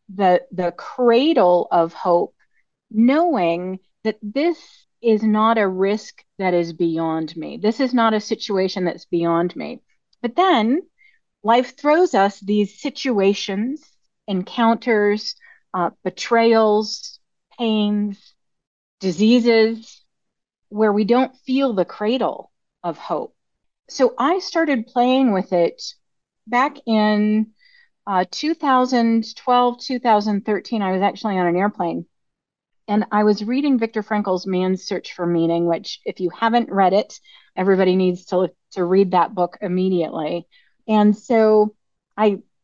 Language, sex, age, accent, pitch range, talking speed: English, female, 40-59, American, 185-245 Hz, 125 wpm